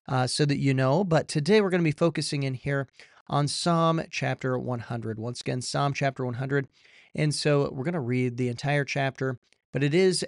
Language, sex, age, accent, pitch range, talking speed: English, male, 40-59, American, 130-160 Hz, 205 wpm